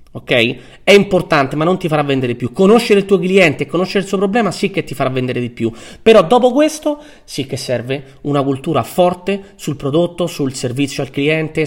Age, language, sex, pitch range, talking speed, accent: 30-49, Italian, male, 140-200 Hz, 205 wpm, native